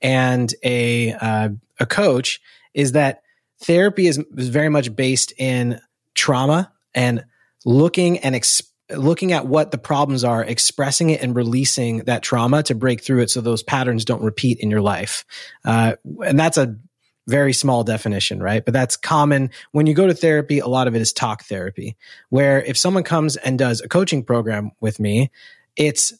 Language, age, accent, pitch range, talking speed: English, 30-49, American, 120-150 Hz, 180 wpm